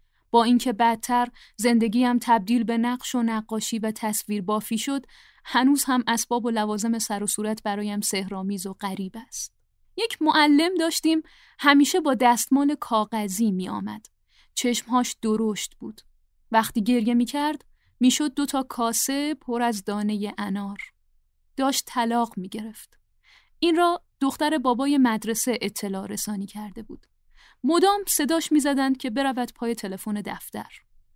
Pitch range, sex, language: 215-270 Hz, female, Persian